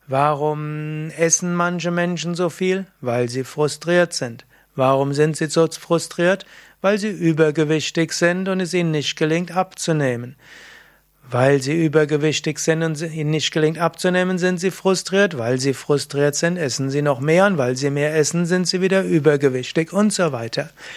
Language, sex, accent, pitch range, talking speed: German, male, German, 145-175 Hz, 165 wpm